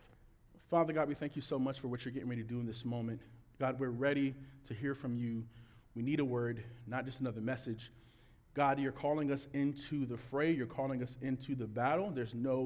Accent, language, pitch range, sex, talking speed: American, English, 115-145 Hz, male, 225 wpm